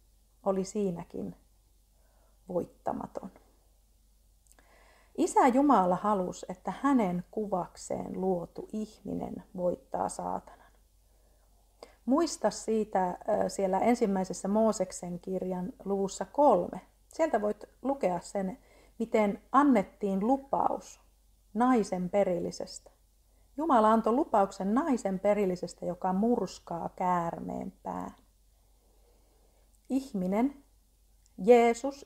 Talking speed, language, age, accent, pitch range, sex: 75 wpm, Finnish, 40-59, native, 185-225 Hz, female